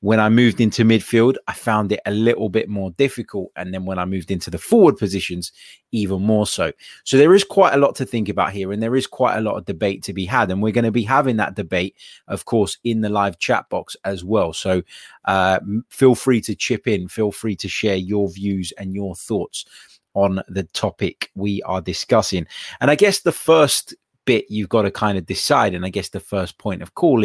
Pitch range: 95-115 Hz